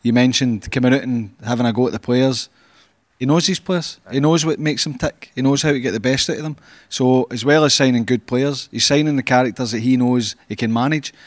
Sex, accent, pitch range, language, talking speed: male, British, 125-145 Hz, English, 255 wpm